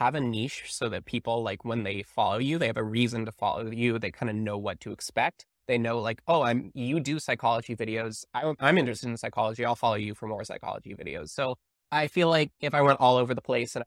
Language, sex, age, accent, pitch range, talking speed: English, male, 20-39, American, 115-150 Hz, 245 wpm